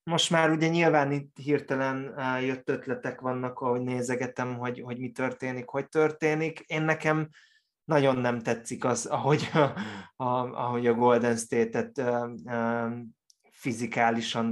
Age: 20-39